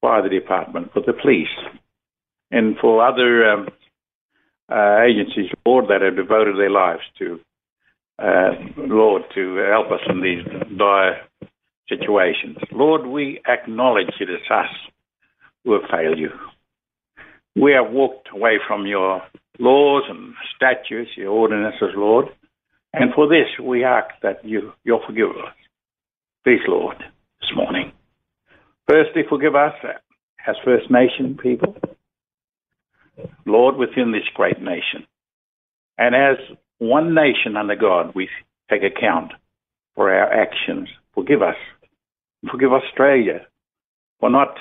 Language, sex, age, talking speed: English, male, 60-79, 125 wpm